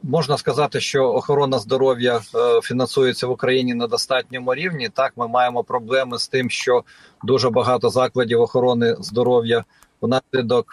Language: Ukrainian